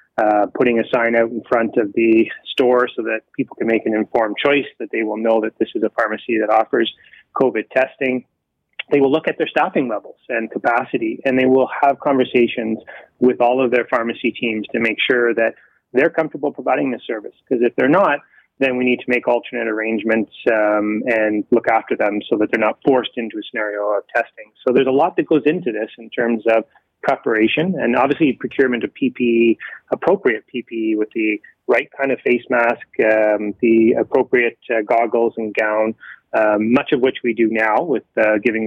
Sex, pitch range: male, 110-125 Hz